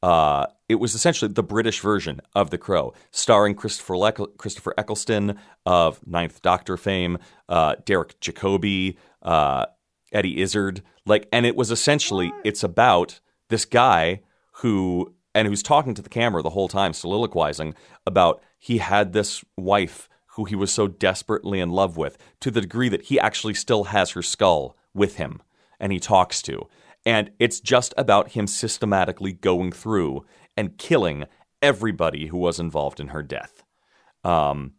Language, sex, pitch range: English, male, 90-110 Hz